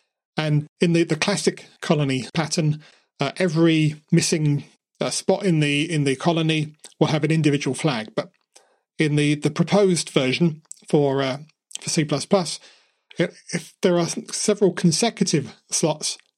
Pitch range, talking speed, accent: 150-185 Hz, 145 wpm, British